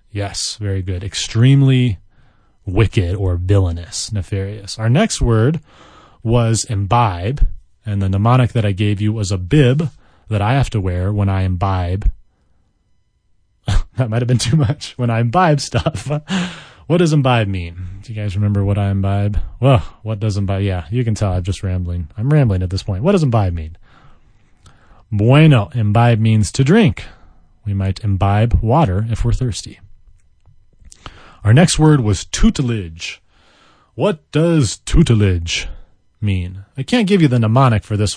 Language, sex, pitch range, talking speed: English, male, 95-125 Hz, 160 wpm